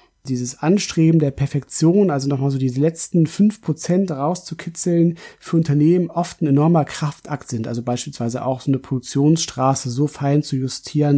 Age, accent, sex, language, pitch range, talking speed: 30-49, German, male, German, 130-155 Hz, 150 wpm